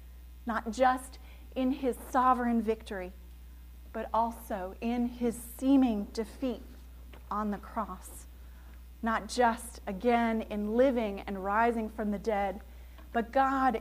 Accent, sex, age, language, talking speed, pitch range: American, female, 30-49, English, 115 wpm, 200-260 Hz